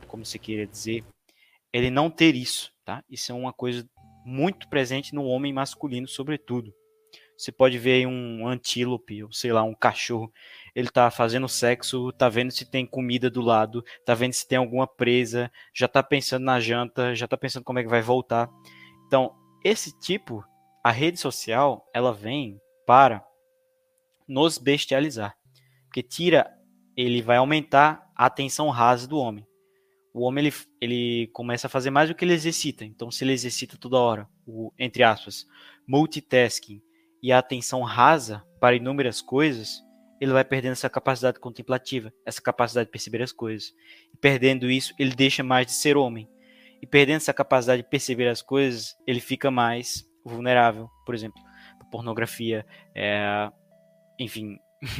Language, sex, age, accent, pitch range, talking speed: Portuguese, male, 20-39, Brazilian, 115-140 Hz, 160 wpm